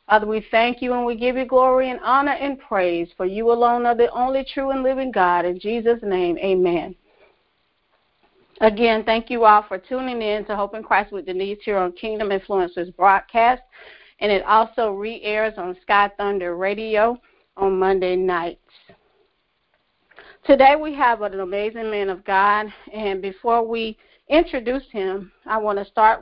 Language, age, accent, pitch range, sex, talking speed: English, 40-59, American, 195-240 Hz, female, 165 wpm